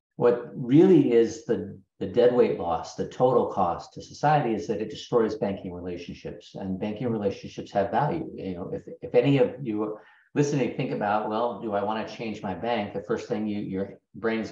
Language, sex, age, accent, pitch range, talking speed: English, male, 50-69, American, 95-115 Hz, 195 wpm